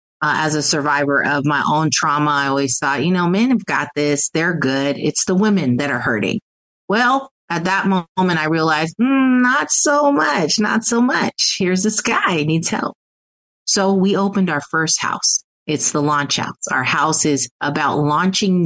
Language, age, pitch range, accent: English, 30-49, 140-170 Hz, American